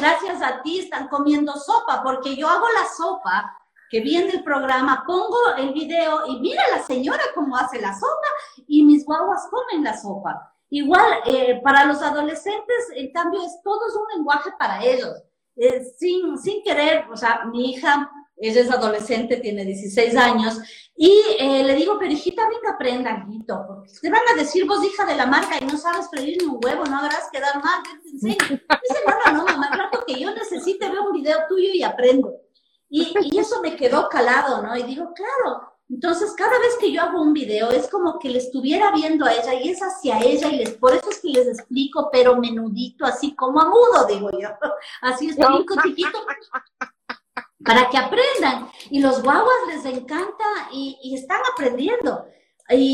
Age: 40-59